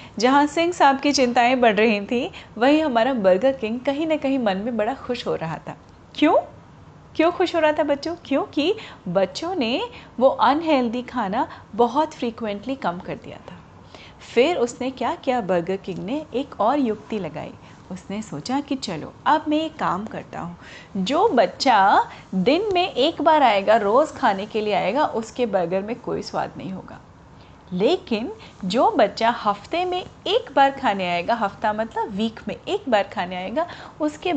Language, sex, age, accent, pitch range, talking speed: Hindi, female, 30-49, native, 205-295 Hz, 175 wpm